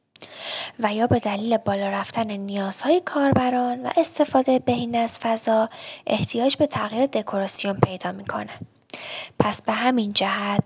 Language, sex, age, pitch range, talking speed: Persian, female, 10-29, 205-255 Hz, 130 wpm